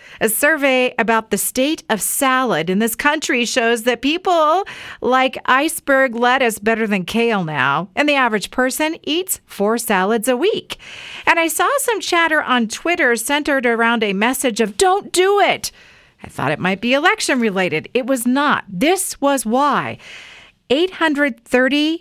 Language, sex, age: English, female, 40-59